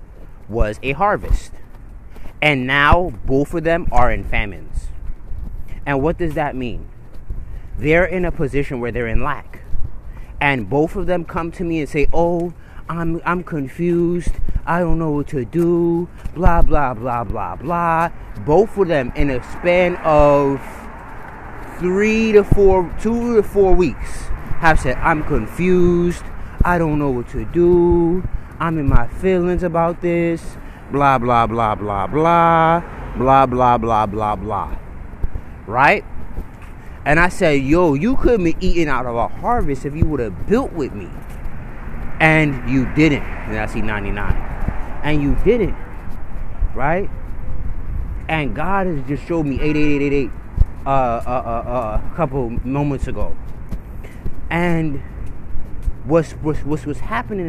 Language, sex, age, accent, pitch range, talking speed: English, male, 30-49, American, 115-170 Hz, 145 wpm